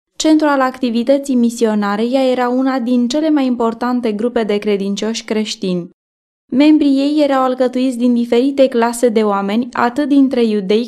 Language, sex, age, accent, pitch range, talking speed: Romanian, female, 20-39, native, 220-275 Hz, 150 wpm